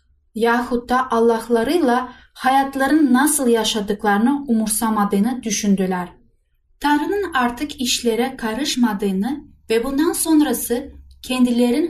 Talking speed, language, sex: 80 wpm, Turkish, female